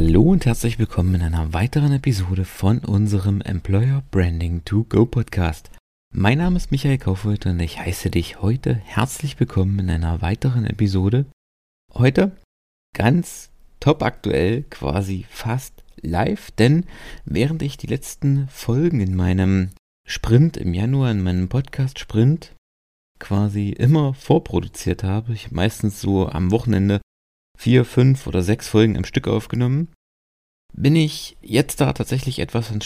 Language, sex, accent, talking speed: German, male, German, 140 wpm